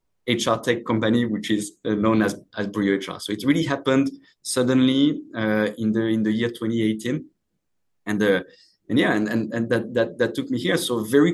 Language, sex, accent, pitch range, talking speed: English, male, French, 110-140 Hz, 195 wpm